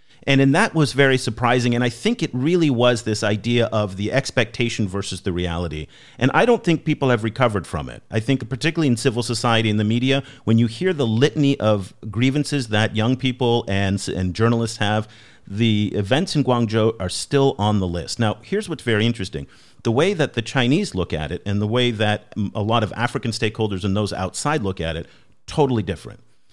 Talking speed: 205 wpm